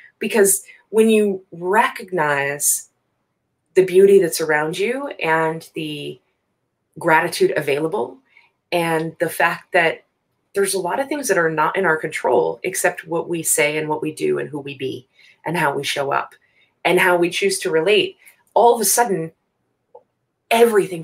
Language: English